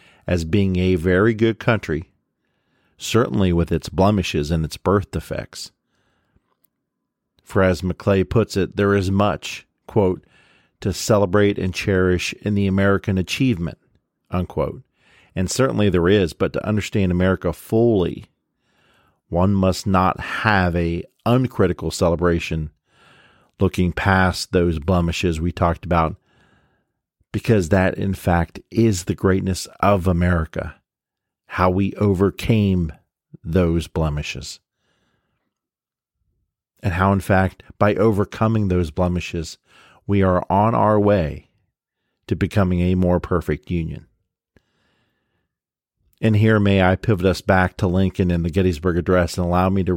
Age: 50-69